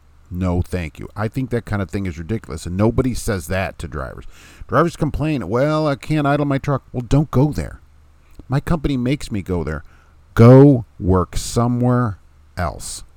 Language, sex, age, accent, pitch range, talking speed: English, male, 40-59, American, 80-120 Hz, 180 wpm